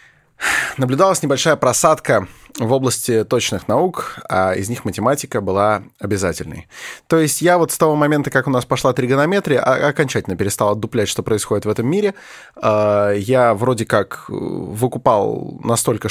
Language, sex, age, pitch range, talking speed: Russian, male, 20-39, 110-145 Hz, 140 wpm